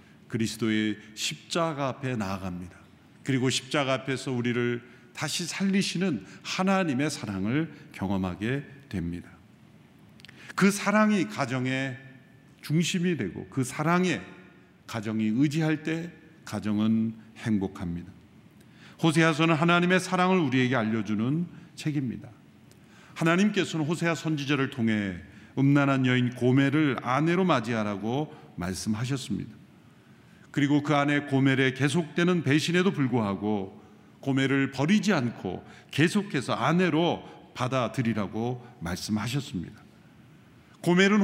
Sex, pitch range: male, 110-170 Hz